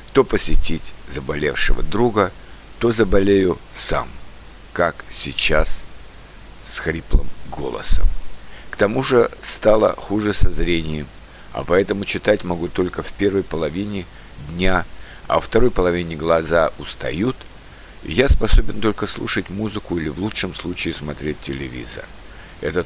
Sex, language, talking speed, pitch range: male, Russian, 125 wpm, 80-105 Hz